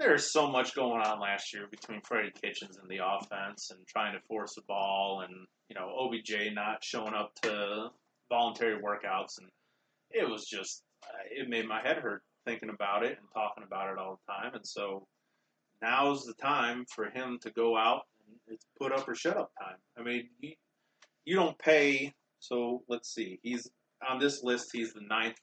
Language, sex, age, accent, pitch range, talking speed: English, male, 30-49, American, 110-135 Hz, 190 wpm